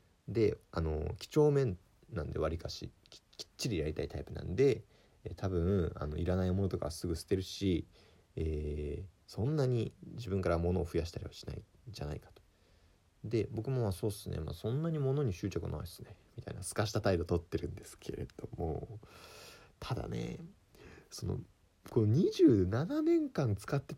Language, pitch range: Japanese, 85-120 Hz